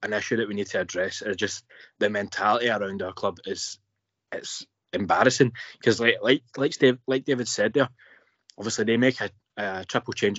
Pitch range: 105-125 Hz